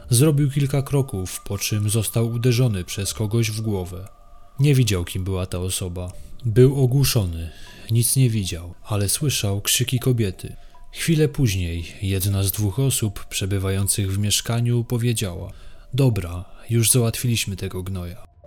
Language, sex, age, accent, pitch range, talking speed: Polish, male, 20-39, native, 95-120 Hz, 135 wpm